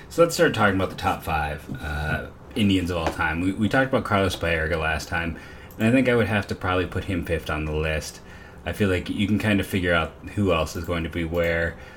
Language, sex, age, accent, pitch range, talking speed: English, male, 30-49, American, 85-100 Hz, 255 wpm